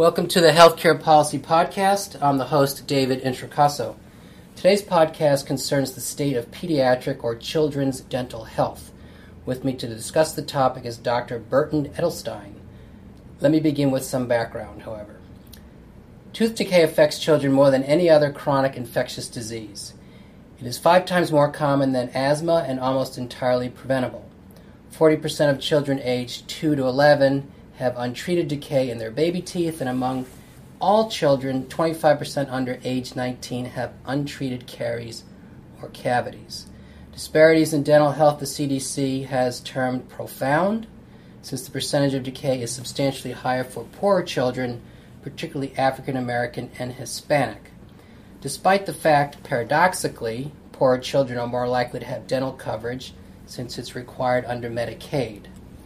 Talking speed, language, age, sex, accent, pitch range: 140 wpm, English, 30-49, male, American, 125-150 Hz